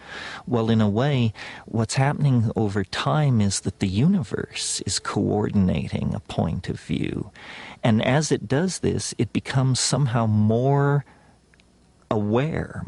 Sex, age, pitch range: male, 50-69, 95-120 Hz